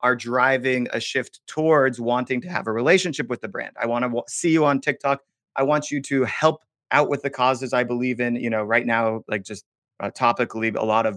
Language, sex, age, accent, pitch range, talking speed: English, male, 30-49, American, 115-140 Hz, 235 wpm